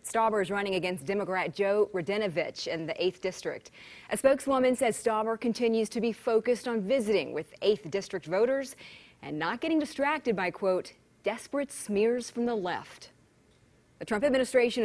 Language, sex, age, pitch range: English, female, 30-49, 175-230 Hz